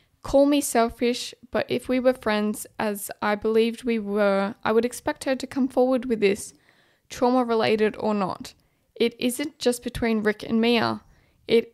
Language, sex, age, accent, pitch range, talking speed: English, female, 10-29, Australian, 210-245 Hz, 170 wpm